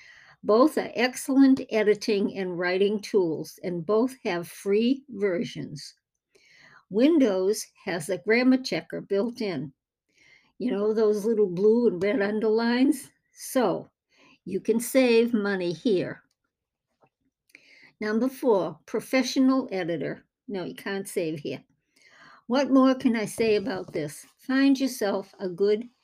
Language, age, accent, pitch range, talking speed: English, 60-79, American, 195-245 Hz, 120 wpm